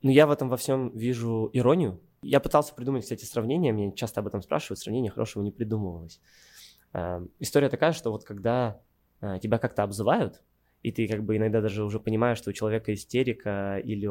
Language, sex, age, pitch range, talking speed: Russian, male, 20-39, 95-110 Hz, 185 wpm